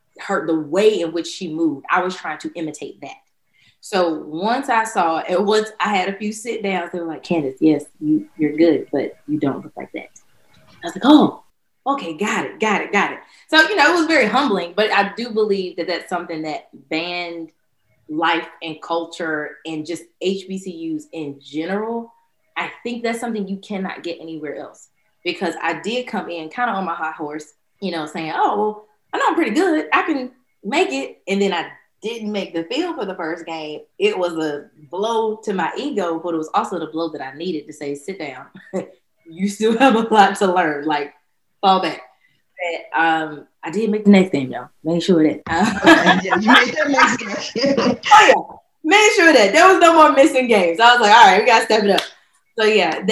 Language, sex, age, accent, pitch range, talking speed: English, female, 20-39, American, 165-225 Hz, 210 wpm